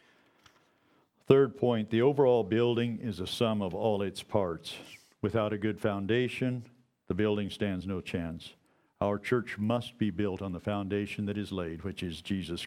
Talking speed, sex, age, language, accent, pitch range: 165 wpm, male, 50-69, English, American, 100-120 Hz